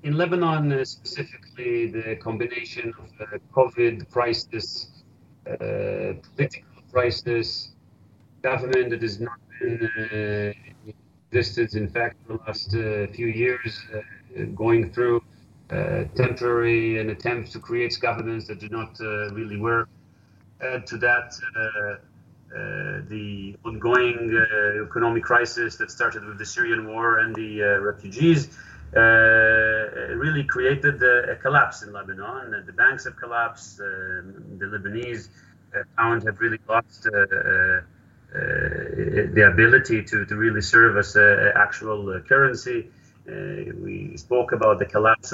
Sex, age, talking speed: male, 40-59, 135 wpm